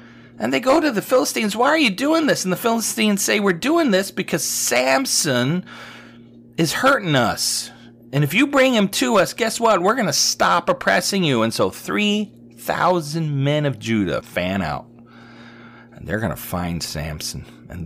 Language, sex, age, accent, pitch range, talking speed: English, male, 40-59, American, 120-175 Hz, 180 wpm